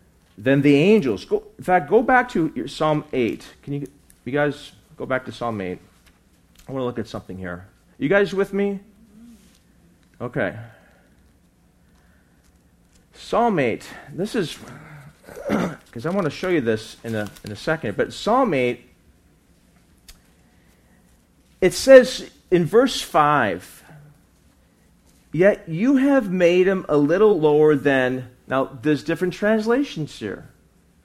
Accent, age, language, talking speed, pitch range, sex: American, 40-59, English, 135 wpm, 120-175 Hz, male